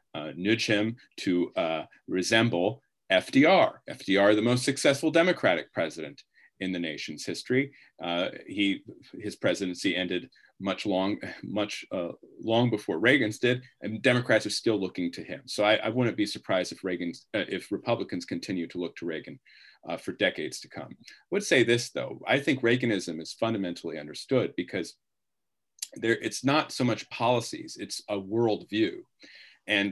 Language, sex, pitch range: English, male, 95-120 Hz